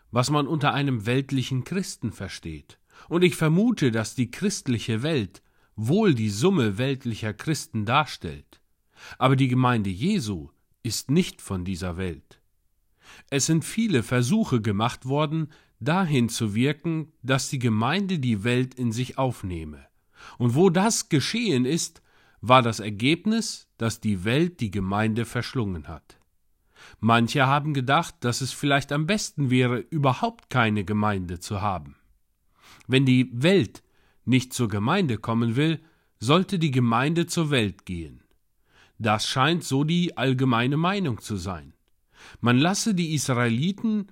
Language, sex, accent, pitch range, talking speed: German, male, German, 105-155 Hz, 135 wpm